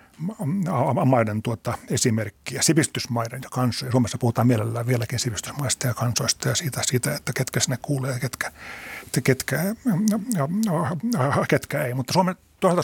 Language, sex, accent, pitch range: Finnish, male, native, 120-145 Hz